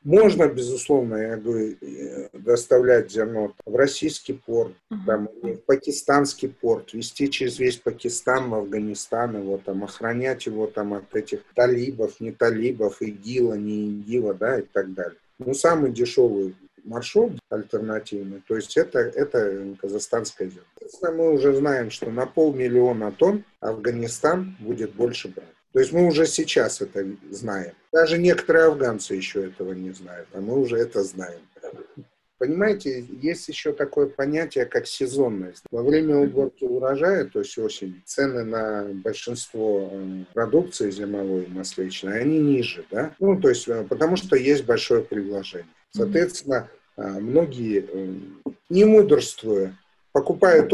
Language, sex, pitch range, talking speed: Russian, male, 105-160 Hz, 135 wpm